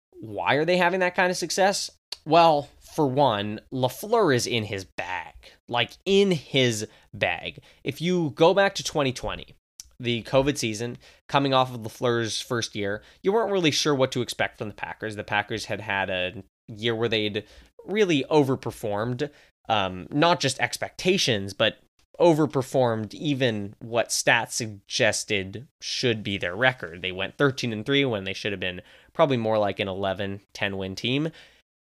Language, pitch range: English, 105-140 Hz